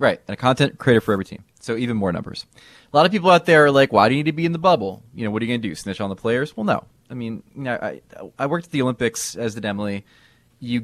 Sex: male